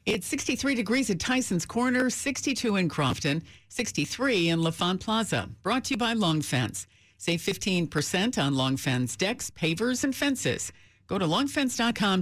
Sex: female